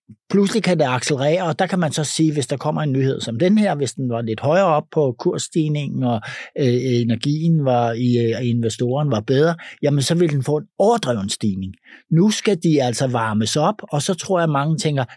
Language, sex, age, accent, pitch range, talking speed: Danish, male, 60-79, native, 110-150 Hz, 220 wpm